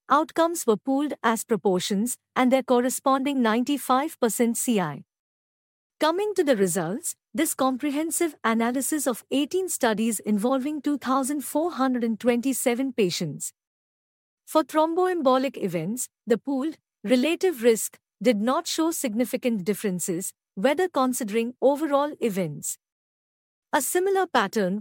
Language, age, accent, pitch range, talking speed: English, 50-69, Indian, 220-280 Hz, 100 wpm